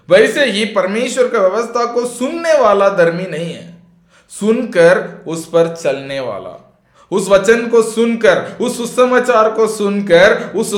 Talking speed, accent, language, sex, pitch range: 140 wpm, native, Hindi, male, 185-240 Hz